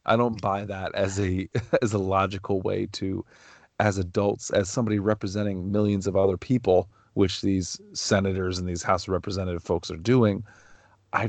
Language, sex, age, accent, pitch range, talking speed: English, male, 30-49, American, 95-120 Hz, 170 wpm